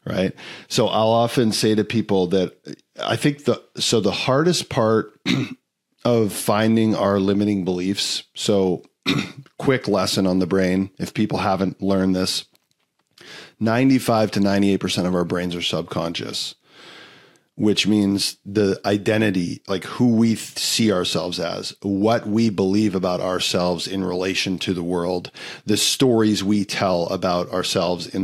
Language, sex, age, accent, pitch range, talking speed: English, male, 40-59, American, 95-110 Hz, 150 wpm